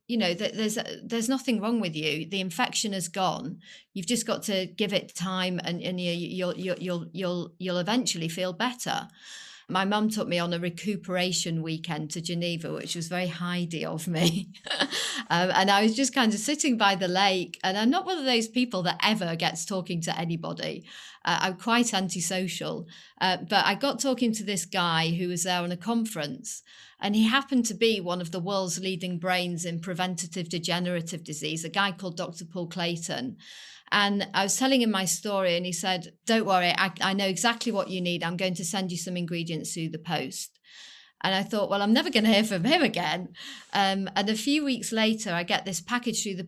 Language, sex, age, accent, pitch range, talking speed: English, female, 40-59, British, 175-215 Hz, 210 wpm